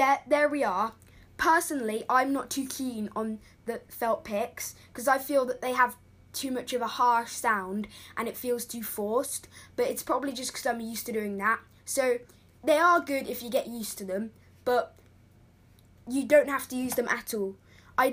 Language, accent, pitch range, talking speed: English, British, 200-270 Hz, 200 wpm